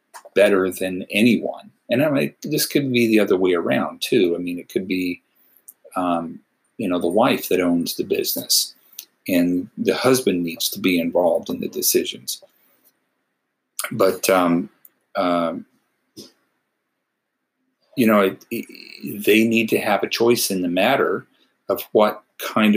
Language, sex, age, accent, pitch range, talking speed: English, male, 40-59, American, 90-115 Hz, 150 wpm